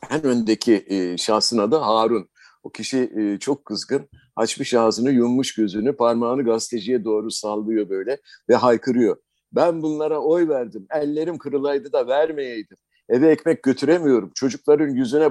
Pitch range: 110-160 Hz